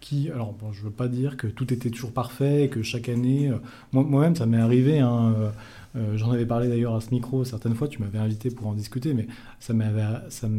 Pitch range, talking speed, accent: 115-140 Hz, 240 wpm, French